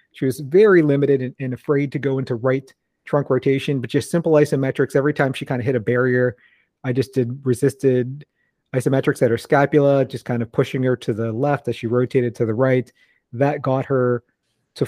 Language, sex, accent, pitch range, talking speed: English, male, American, 125-145 Hz, 200 wpm